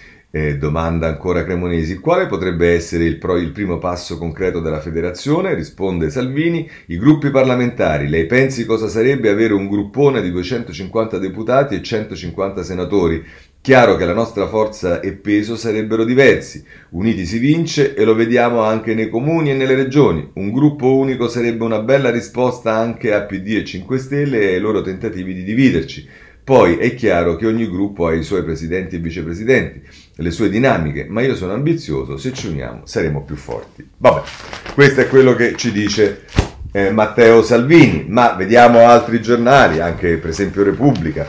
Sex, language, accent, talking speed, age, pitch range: male, Italian, native, 165 wpm, 40-59, 90-120 Hz